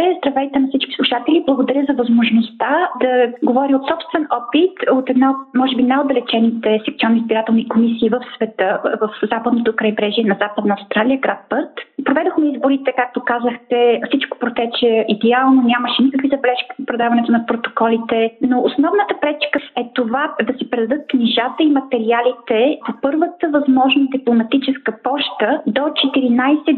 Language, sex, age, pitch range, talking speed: Bulgarian, female, 30-49, 230-280 Hz, 140 wpm